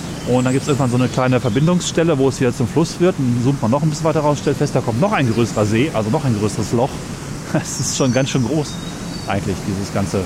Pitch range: 110-135 Hz